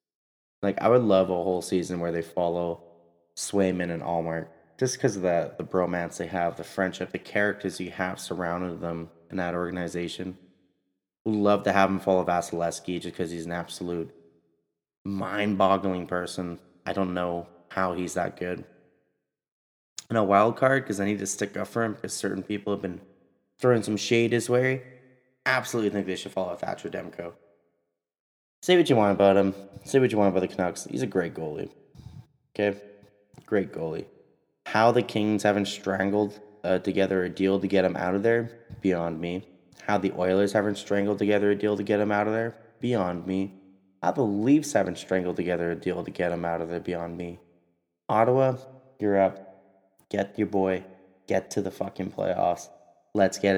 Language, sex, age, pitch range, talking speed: English, male, 20-39, 85-105 Hz, 185 wpm